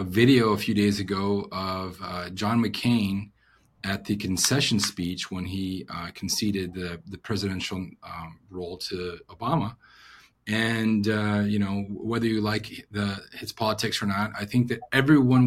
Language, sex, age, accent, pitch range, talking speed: English, male, 30-49, American, 100-115 Hz, 160 wpm